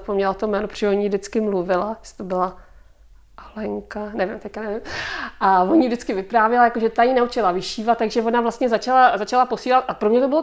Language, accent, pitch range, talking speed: Czech, native, 195-235 Hz, 205 wpm